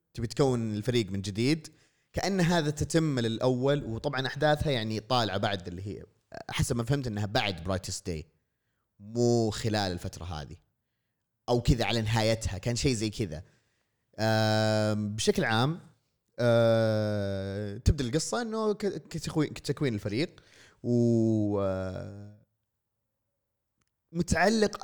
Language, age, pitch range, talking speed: Arabic, 30-49, 105-130 Hz, 105 wpm